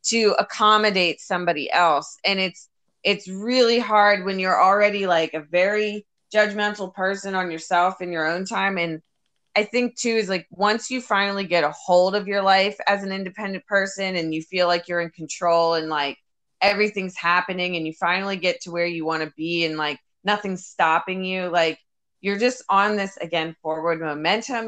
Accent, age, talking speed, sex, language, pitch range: American, 20-39, 185 wpm, female, English, 165-200 Hz